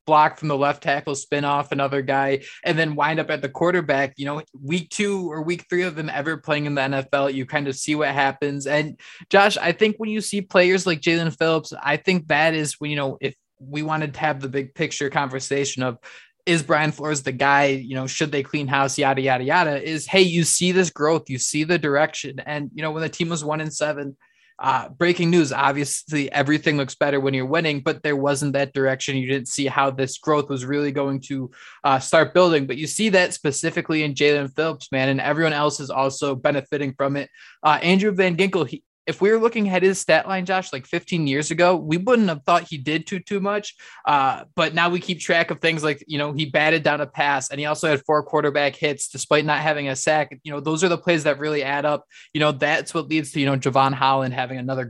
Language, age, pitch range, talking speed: English, 20-39, 140-160 Hz, 240 wpm